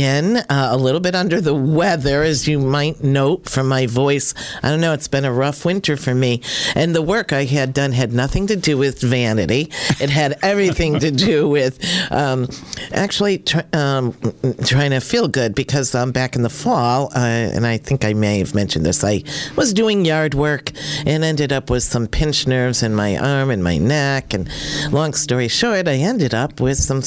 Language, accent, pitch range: English, American, 125-155 Hz